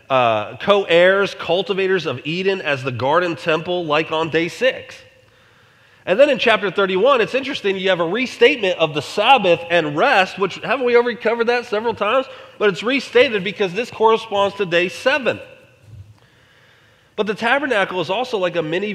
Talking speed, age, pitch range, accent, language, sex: 170 wpm, 30-49, 130-195 Hz, American, English, male